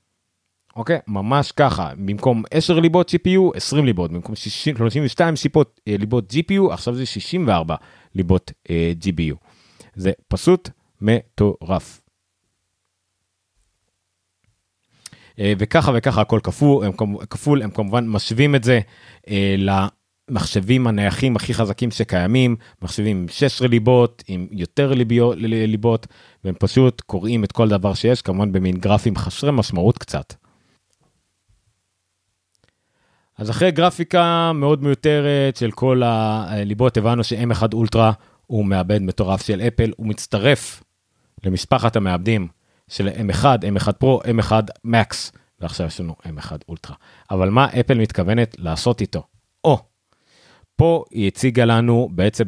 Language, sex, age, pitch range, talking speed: Hebrew, male, 30-49, 95-125 Hz, 120 wpm